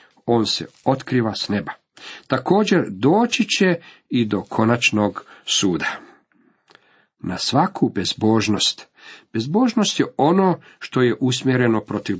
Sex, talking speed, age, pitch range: male, 110 wpm, 50-69, 115-165 Hz